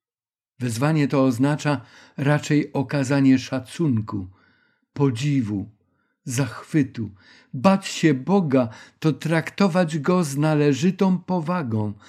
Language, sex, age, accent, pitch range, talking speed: Polish, male, 50-69, native, 130-160 Hz, 85 wpm